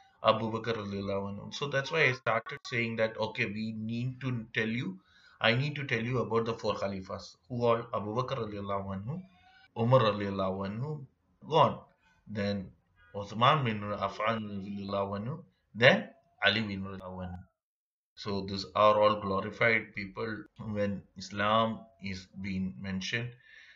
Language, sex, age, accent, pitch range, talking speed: Malayalam, male, 30-49, native, 100-120 Hz, 155 wpm